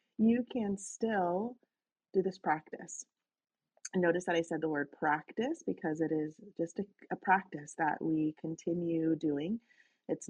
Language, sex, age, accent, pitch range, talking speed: English, female, 30-49, American, 160-200 Hz, 145 wpm